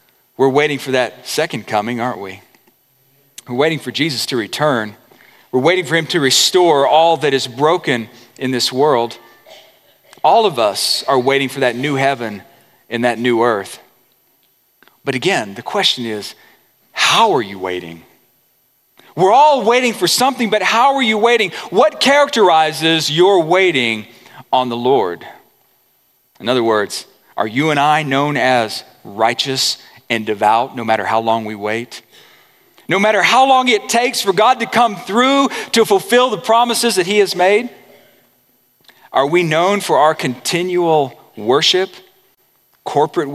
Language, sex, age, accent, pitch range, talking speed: English, male, 40-59, American, 125-200 Hz, 155 wpm